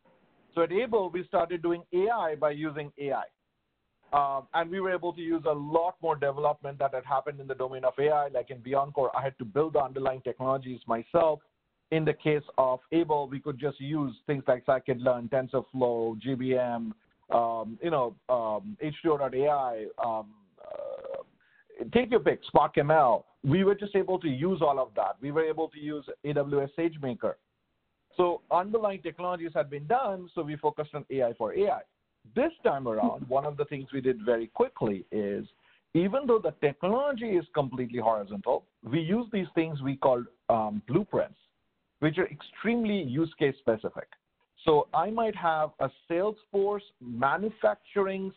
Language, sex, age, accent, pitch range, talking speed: English, male, 50-69, Indian, 135-185 Hz, 165 wpm